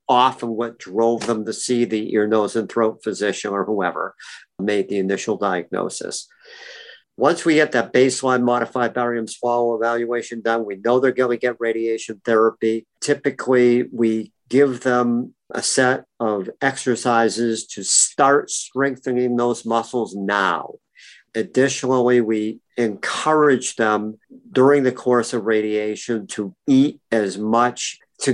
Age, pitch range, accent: 50-69, 110-135 Hz, American